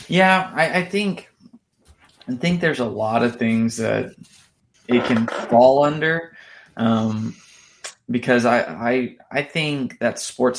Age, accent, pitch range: 20-39, American, 115-130 Hz